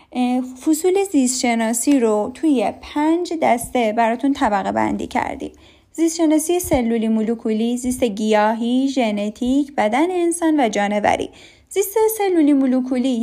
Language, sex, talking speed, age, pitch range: Persian, female, 105 wpm, 10-29, 230-315 Hz